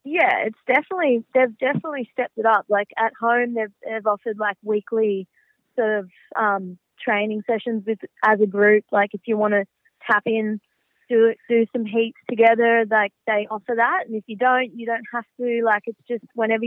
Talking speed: 195 wpm